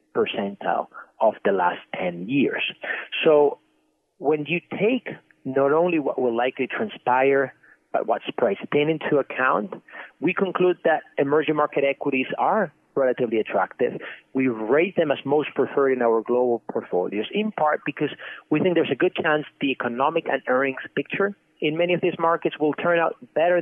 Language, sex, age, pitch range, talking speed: English, male, 30-49, 135-165 Hz, 165 wpm